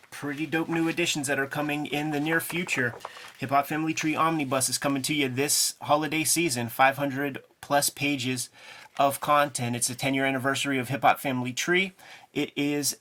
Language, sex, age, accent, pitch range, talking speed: English, male, 30-49, American, 125-150 Hz, 175 wpm